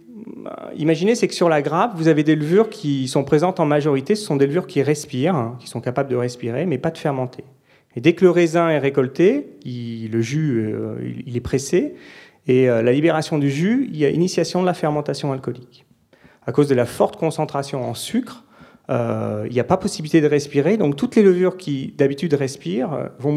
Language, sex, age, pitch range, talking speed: French, male, 30-49, 125-170 Hz, 205 wpm